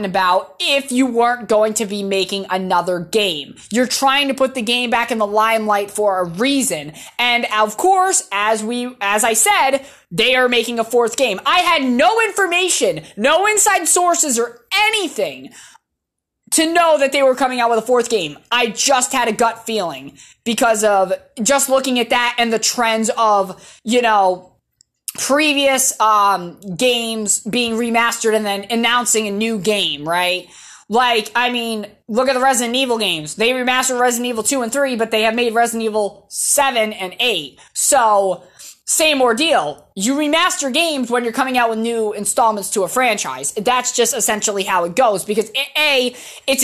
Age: 20-39